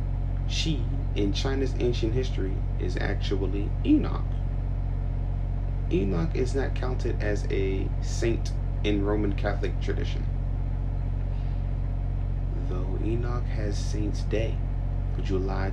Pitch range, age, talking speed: 95-110 Hz, 30-49, 95 wpm